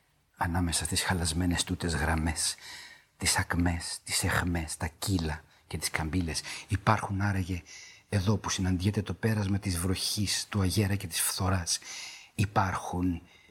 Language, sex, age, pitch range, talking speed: Greek, male, 50-69, 90-100 Hz, 130 wpm